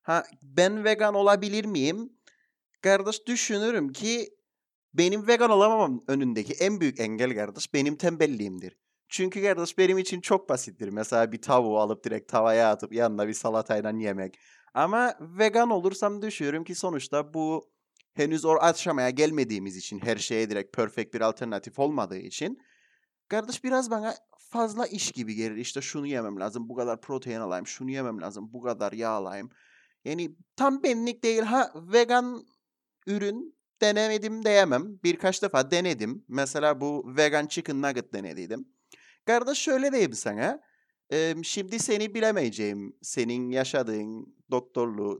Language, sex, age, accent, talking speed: Turkish, male, 30-49, native, 140 wpm